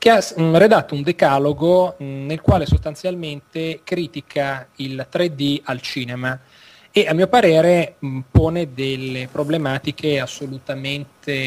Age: 30-49